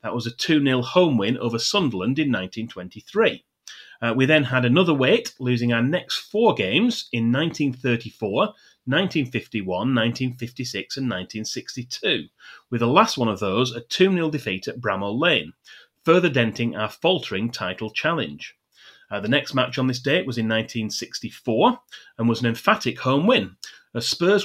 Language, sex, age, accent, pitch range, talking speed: English, male, 30-49, British, 115-145 Hz, 150 wpm